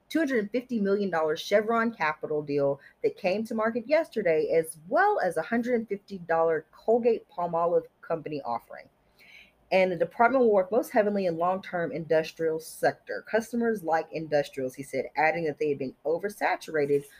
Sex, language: female, English